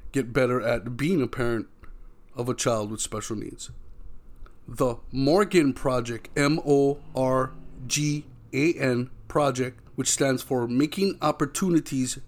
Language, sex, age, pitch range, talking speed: English, male, 30-49, 120-140 Hz, 110 wpm